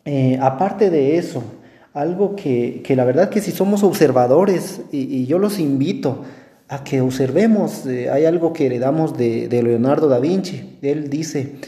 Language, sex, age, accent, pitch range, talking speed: Spanish, male, 40-59, Mexican, 135-180 Hz, 170 wpm